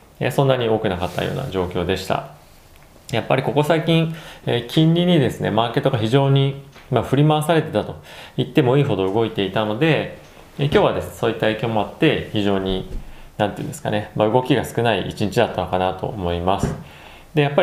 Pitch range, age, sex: 90-135 Hz, 20-39, male